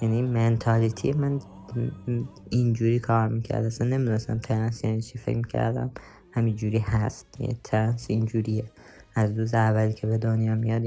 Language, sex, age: English, female, 20-39